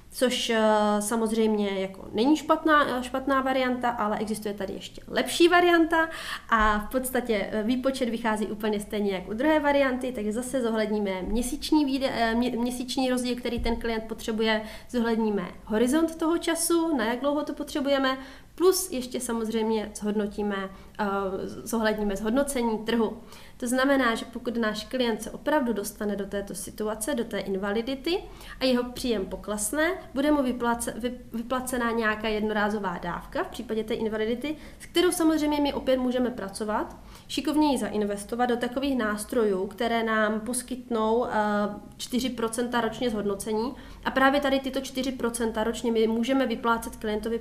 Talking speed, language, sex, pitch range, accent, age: 140 wpm, Czech, female, 210-255 Hz, native, 30-49